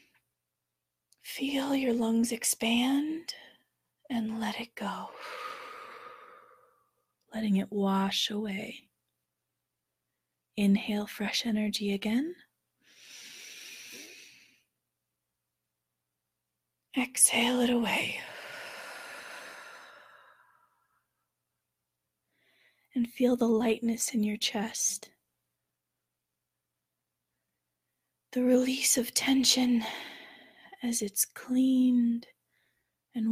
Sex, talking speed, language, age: female, 60 wpm, English, 30-49